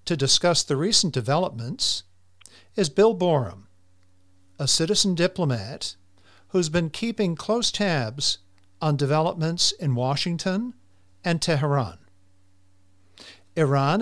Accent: American